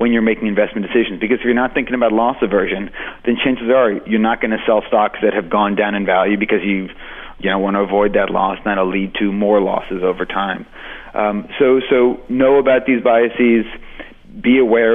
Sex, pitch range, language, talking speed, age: male, 100-120 Hz, English, 215 wpm, 30-49